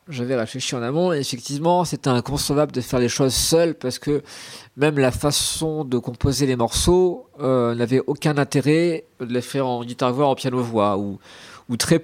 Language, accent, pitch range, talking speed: French, French, 115-145 Hz, 185 wpm